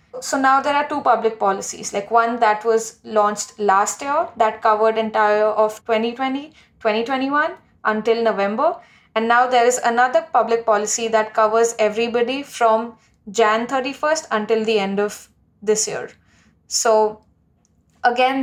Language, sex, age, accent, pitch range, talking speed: English, female, 20-39, Indian, 215-250 Hz, 140 wpm